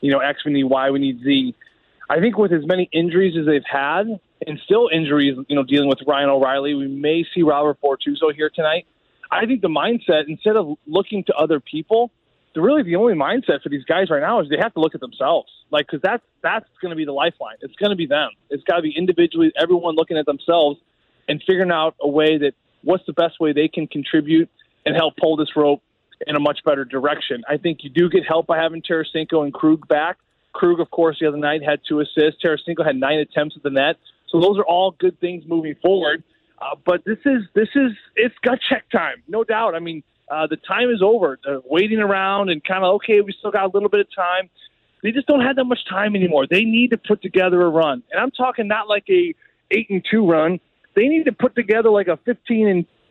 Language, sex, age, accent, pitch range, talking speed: English, male, 20-39, American, 150-210 Hz, 235 wpm